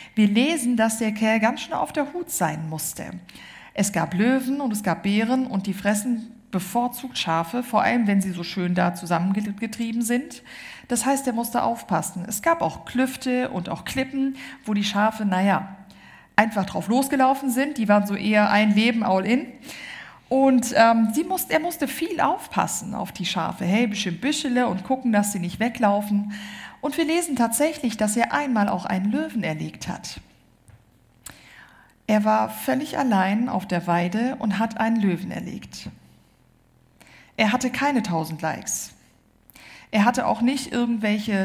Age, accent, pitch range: 50-69, German, 195-245 Hz